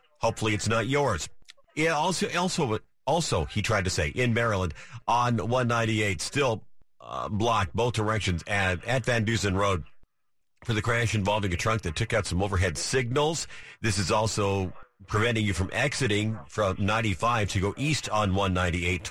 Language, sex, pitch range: English, male, 95-125 Hz